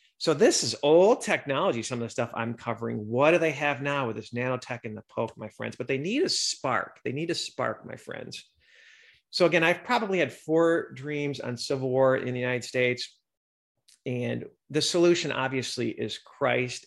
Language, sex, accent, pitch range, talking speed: English, male, American, 115-135 Hz, 195 wpm